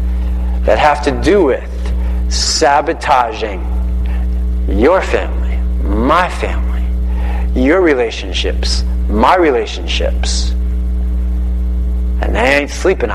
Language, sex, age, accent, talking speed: English, male, 30-49, American, 80 wpm